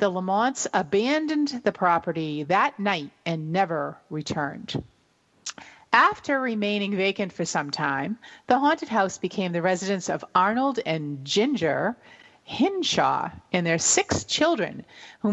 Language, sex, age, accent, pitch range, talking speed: English, female, 40-59, American, 170-240 Hz, 125 wpm